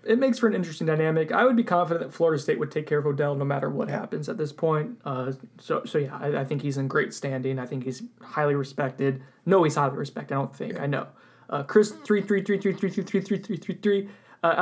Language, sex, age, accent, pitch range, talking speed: English, male, 20-39, American, 155-195 Hz, 205 wpm